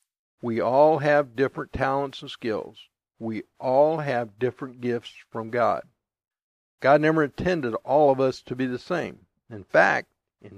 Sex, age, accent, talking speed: male, 60-79, American, 155 wpm